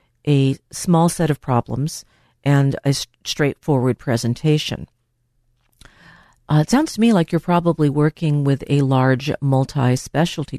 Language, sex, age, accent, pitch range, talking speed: English, female, 50-69, American, 130-165 Hz, 125 wpm